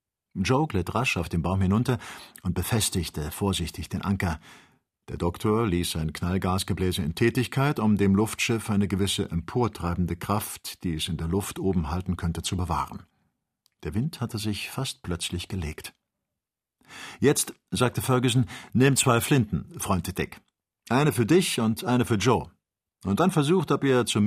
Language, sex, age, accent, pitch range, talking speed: German, male, 50-69, German, 90-120 Hz, 160 wpm